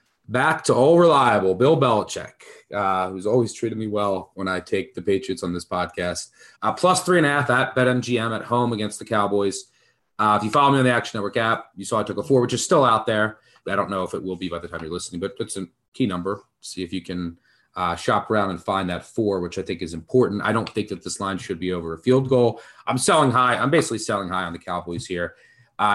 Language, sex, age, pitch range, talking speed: English, male, 30-49, 95-130 Hz, 255 wpm